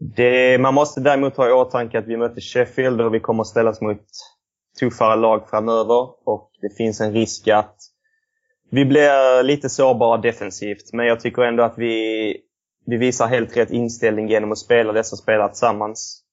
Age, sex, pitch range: 20-39, male, 110-125 Hz